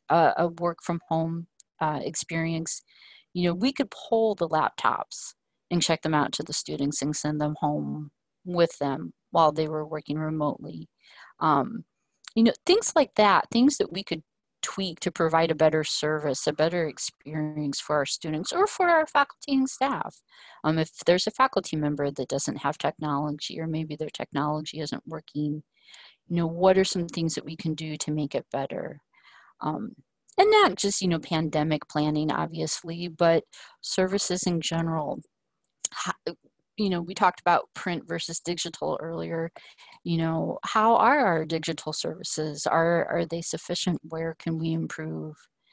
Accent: American